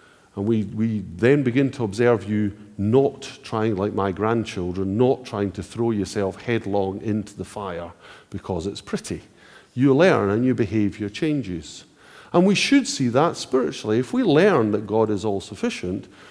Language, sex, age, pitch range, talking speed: English, male, 50-69, 105-155 Hz, 160 wpm